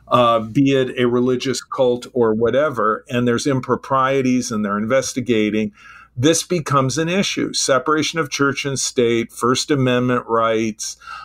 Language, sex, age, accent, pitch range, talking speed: English, male, 50-69, American, 115-145 Hz, 140 wpm